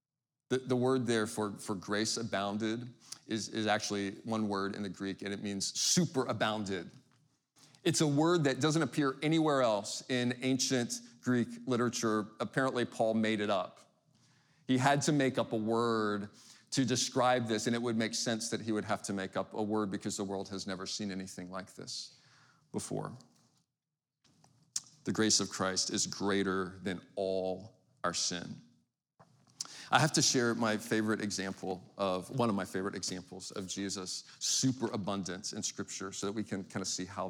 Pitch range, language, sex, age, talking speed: 95-120 Hz, English, male, 40-59, 175 wpm